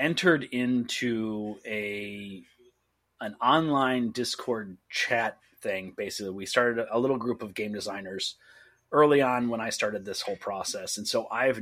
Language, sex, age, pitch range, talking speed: English, male, 30-49, 110-130 Hz, 145 wpm